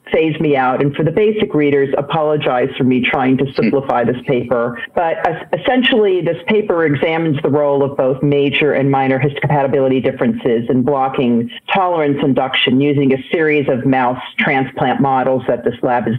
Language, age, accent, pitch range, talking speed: English, 40-59, American, 130-150 Hz, 165 wpm